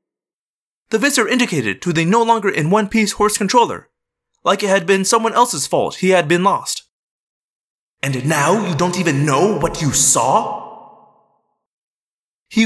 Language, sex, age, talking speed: English, male, 30-49, 135 wpm